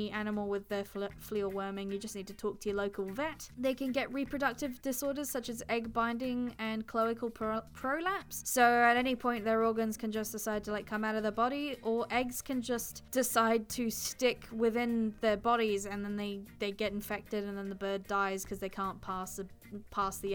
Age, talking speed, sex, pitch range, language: 10-29, 215 wpm, female, 215-250 Hz, English